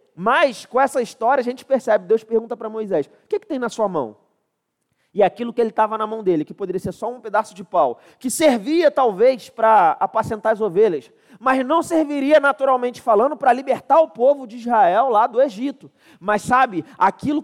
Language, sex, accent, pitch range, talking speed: Portuguese, male, Brazilian, 200-265 Hz, 200 wpm